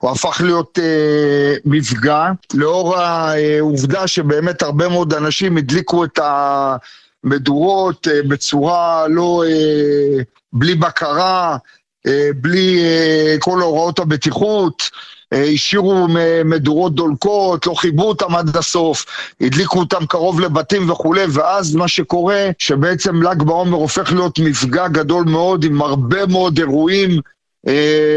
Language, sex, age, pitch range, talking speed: Hebrew, male, 50-69, 150-180 Hz, 120 wpm